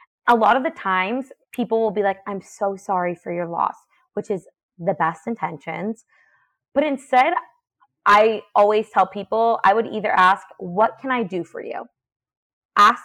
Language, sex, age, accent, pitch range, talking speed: English, female, 20-39, American, 195-260 Hz, 170 wpm